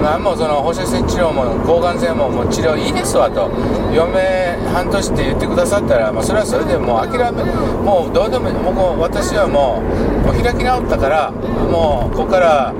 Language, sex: Japanese, male